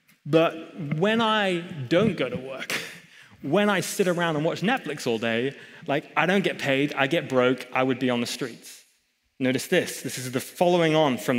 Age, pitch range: 30-49, 130-185 Hz